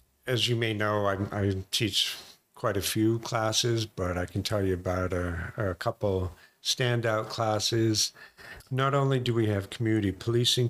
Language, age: English, 50-69